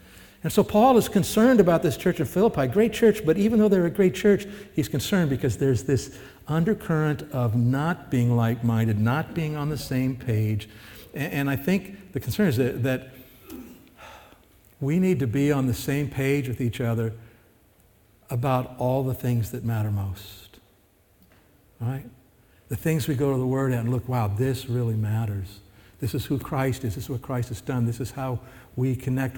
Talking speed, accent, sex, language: 180 wpm, American, male, English